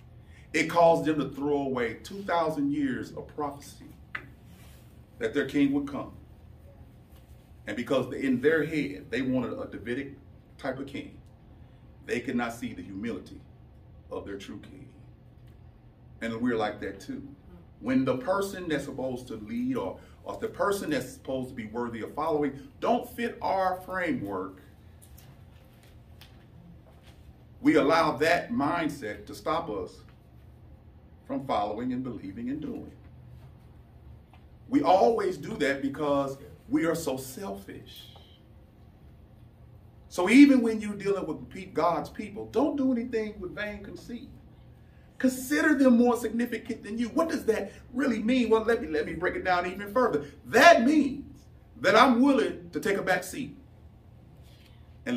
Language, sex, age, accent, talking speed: English, male, 40-59, American, 140 wpm